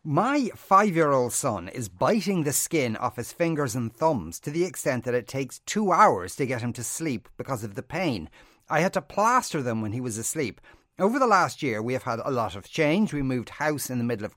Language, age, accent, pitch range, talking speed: English, 40-59, Irish, 115-155 Hz, 235 wpm